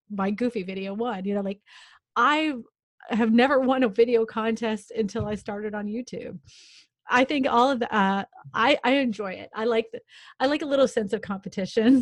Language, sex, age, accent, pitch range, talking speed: English, female, 30-49, American, 200-235 Hz, 190 wpm